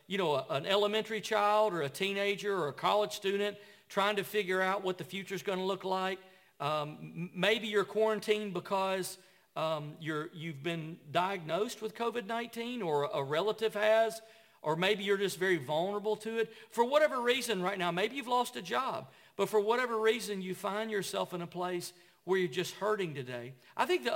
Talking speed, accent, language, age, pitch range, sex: 185 wpm, American, English, 50-69, 180-220 Hz, male